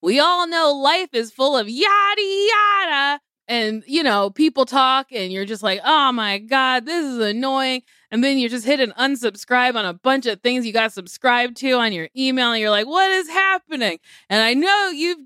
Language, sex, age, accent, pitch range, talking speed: English, female, 20-39, American, 245-345 Hz, 210 wpm